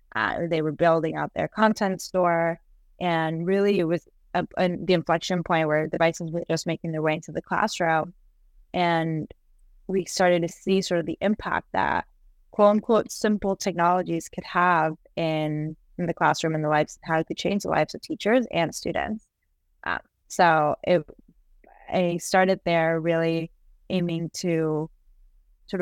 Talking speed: 160 wpm